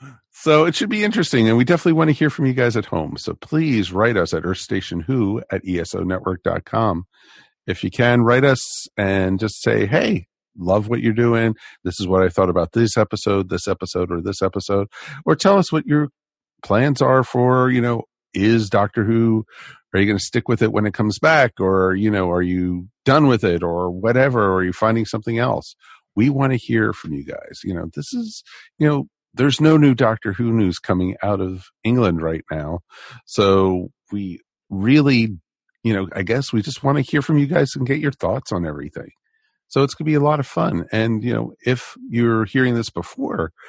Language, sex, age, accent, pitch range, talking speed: English, male, 50-69, American, 90-125 Hz, 210 wpm